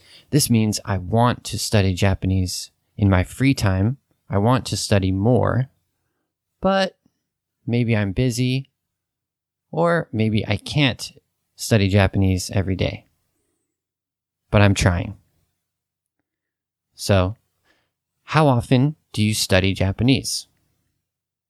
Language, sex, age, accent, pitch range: Japanese, male, 30-49, American, 95-120 Hz